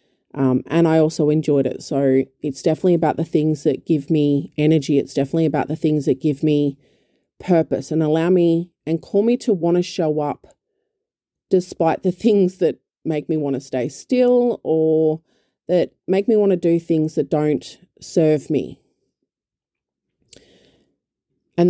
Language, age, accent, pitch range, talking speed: English, 30-49, Australian, 145-175 Hz, 165 wpm